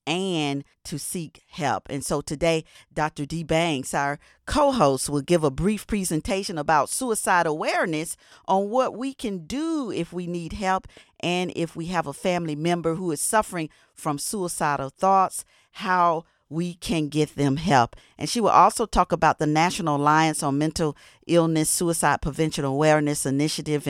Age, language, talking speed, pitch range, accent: 40-59, English, 160 wpm, 150-195 Hz, American